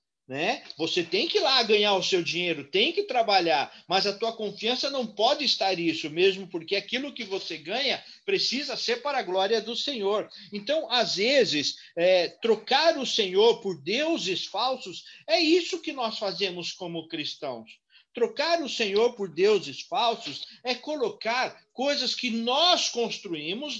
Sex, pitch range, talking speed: male, 205-290 Hz, 160 wpm